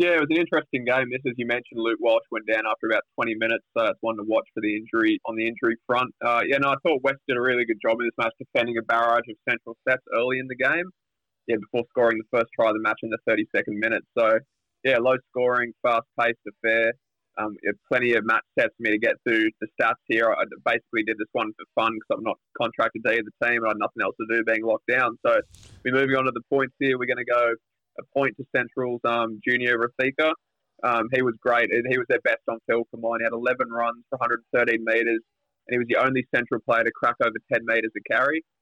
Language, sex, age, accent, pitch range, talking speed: English, male, 20-39, Australian, 115-130 Hz, 255 wpm